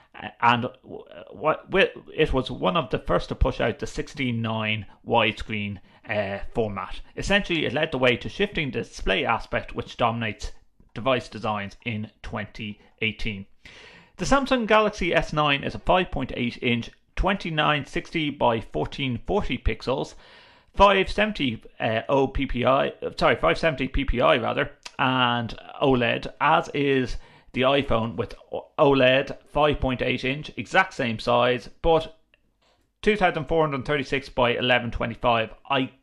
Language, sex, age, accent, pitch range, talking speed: English, male, 30-49, British, 115-155 Hz, 130 wpm